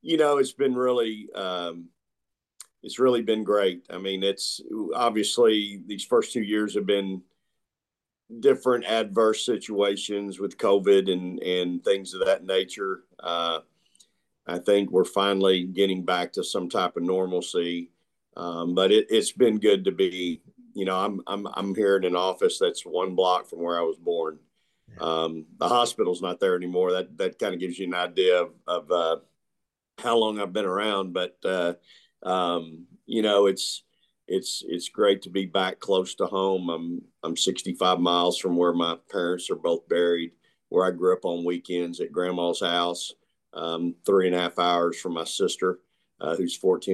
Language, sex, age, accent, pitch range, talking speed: English, male, 50-69, American, 85-125 Hz, 175 wpm